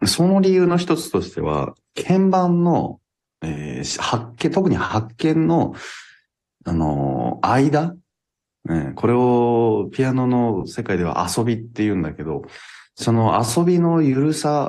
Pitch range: 85-120 Hz